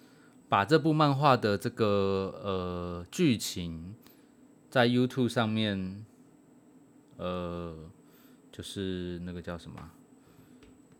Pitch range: 90-110 Hz